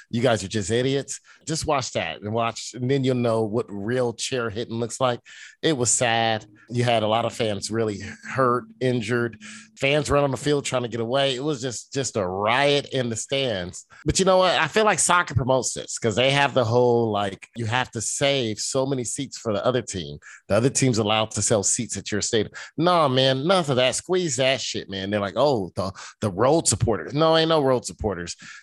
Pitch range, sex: 110-150 Hz, male